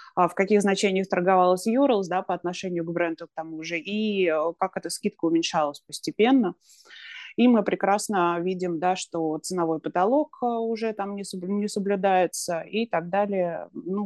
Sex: female